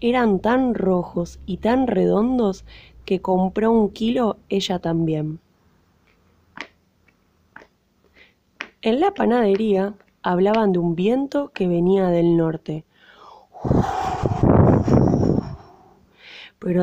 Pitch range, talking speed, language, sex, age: 175-225 Hz, 85 wpm, Spanish, female, 20-39